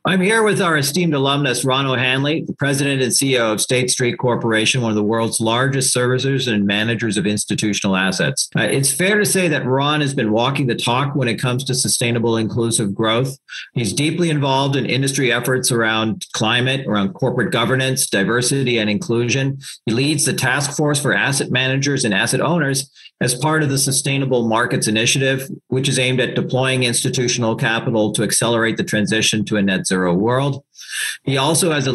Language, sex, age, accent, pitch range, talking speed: English, male, 50-69, American, 120-145 Hz, 185 wpm